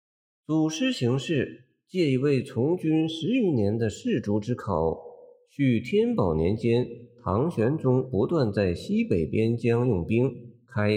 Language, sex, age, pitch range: Chinese, male, 50-69, 105-170 Hz